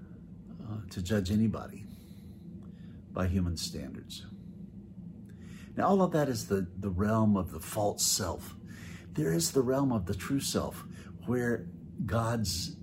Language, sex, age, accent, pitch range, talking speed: English, male, 60-79, American, 95-115 Hz, 130 wpm